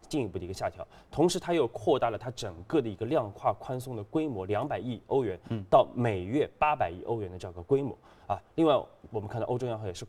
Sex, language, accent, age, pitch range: male, Chinese, native, 20-39, 110-155 Hz